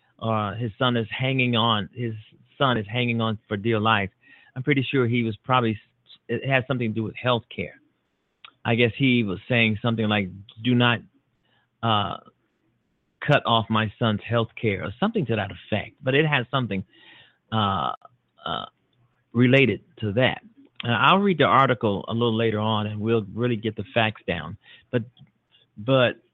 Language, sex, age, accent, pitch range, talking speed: English, male, 40-59, American, 110-145 Hz, 175 wpm